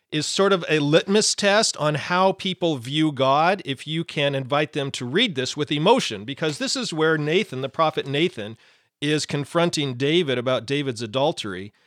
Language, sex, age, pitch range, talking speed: English, male, 40-59, 135-185 Hz, 175 wpm